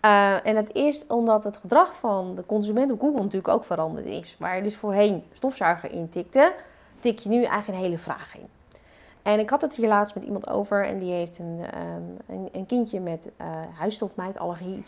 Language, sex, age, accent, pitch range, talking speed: Dutch, female, 30-49, Dutch, 180-245 Hz, 200 wpm